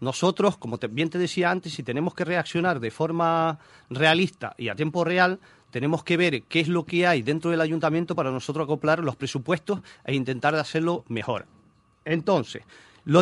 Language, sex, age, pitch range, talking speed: Spanish, male, 40-59, 130-175 Hz, 175 wpm